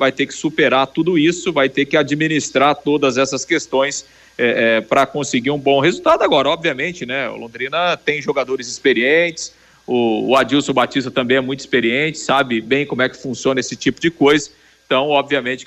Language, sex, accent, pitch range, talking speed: Portuguese, male, Brazilian, 135-155 Hz, 185 wpm